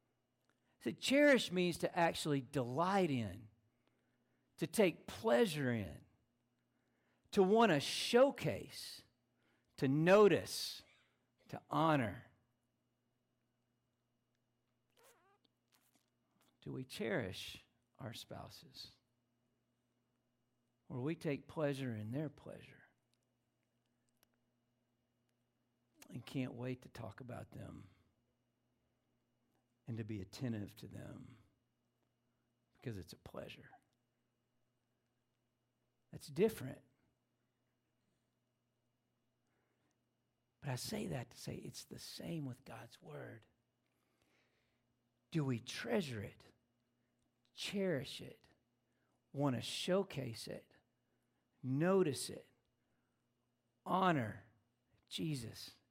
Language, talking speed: English, 80 wpm